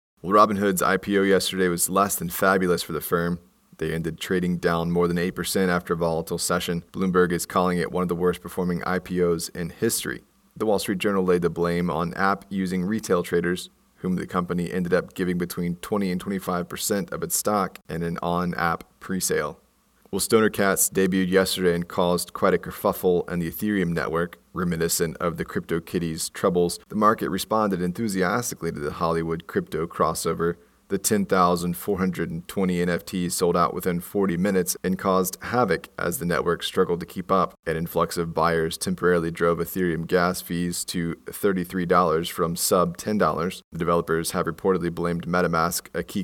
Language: English